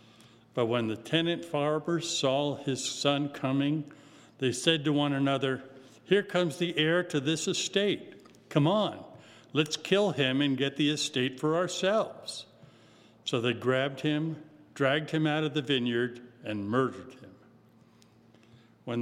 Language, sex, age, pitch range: English, male, 50-69, 115-150 Hz